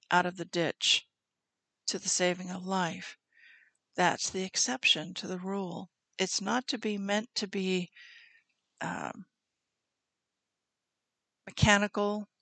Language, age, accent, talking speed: English, 60-79, American, 115 wpm